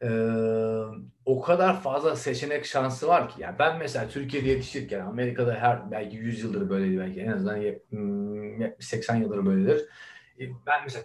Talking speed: 145 wpm